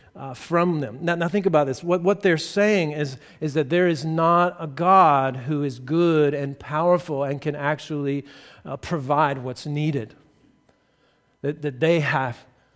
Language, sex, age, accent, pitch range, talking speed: English, male, 50-69, American, 140-180 Hz, 170 wpm